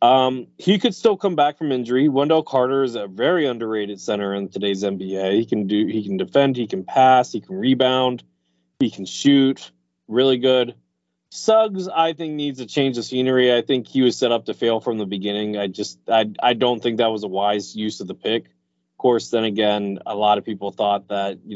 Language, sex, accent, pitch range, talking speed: English, male, American, 100-145 Hz, 220 wpm